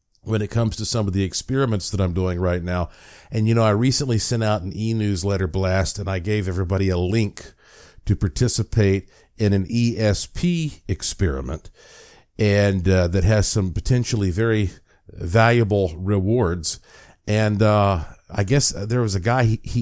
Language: English